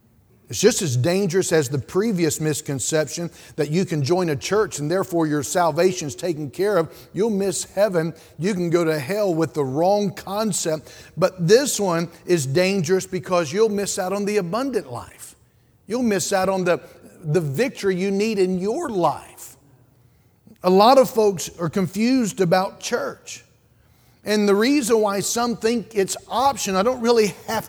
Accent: American